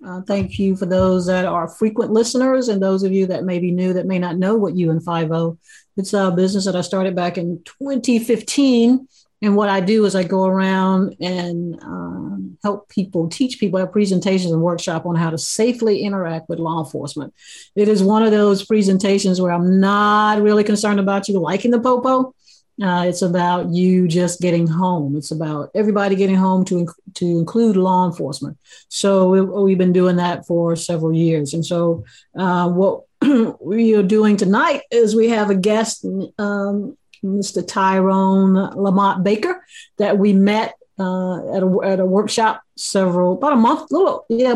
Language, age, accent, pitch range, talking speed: English, 50-69, American, 180-215 Hz, 185 wpm